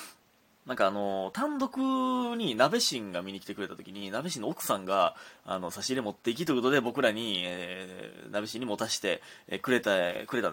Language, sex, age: Japanese, male, 20-39